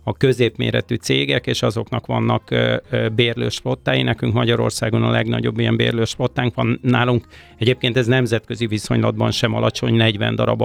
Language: Hungarian